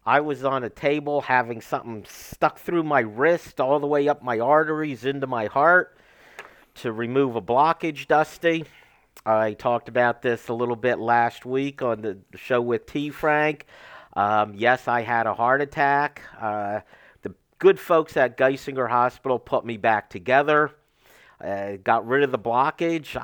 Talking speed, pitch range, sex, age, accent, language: 165 wpm, 110-145 Hz, male, 50-69, American, English